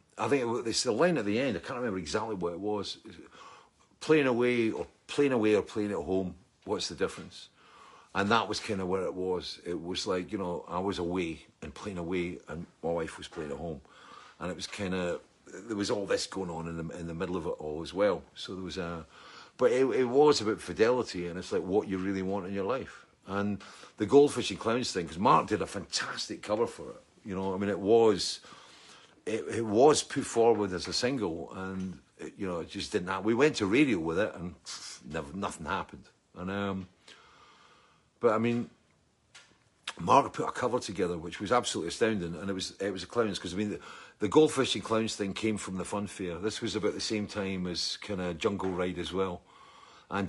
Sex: male